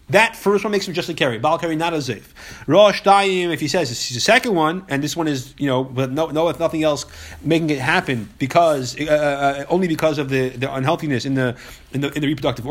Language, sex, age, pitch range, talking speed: English, male, 30-49, 140-195 Hz, 250 wpm